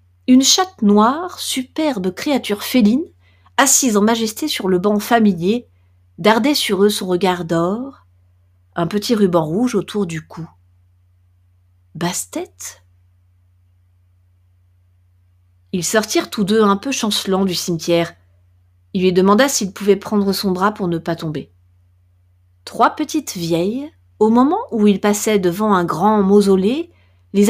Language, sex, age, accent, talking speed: French, female, 30-49, French, 140 wpm